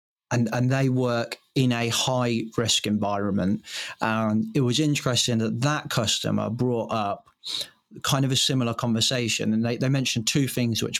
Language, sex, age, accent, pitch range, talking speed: English, male, 30-49, British, 110-130 Hz, 160 wpm